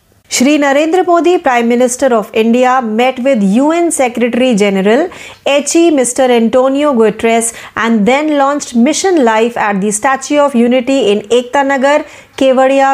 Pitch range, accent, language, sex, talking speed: 225-285 Hz, native, Marathi, female, 140 wpm